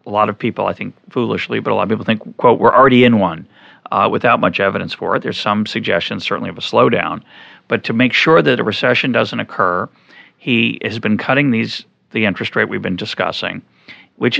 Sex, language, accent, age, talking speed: male, English, American, 40-59, 215 wpm